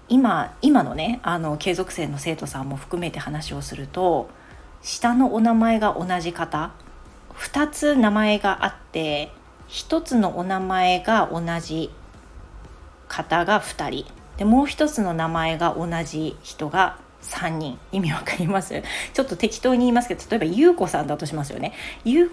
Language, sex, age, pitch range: Japanese, female, 40-59, 150-225 Hz